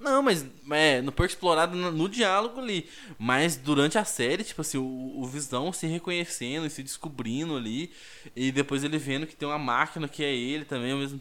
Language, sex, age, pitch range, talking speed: Portuguese, male, 20-39, 135-195 Hz, 210 wpm